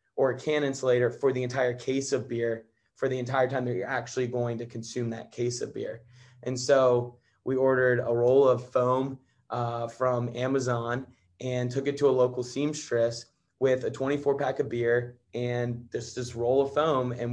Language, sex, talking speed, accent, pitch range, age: English, male, 190 wpm, American, 120-135 Hz, 20-39